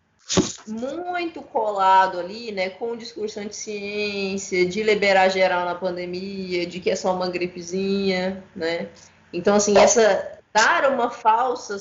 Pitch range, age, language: 175-210 Hz, 20-39, Portuguese